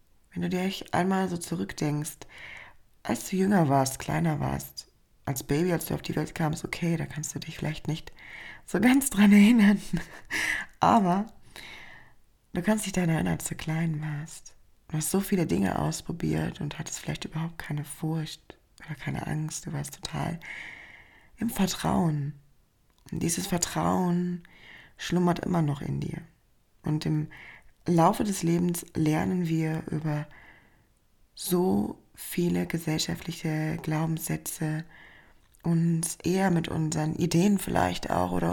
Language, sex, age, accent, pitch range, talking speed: German, female, 20-39, German, 150-170 Hz, 140 wpm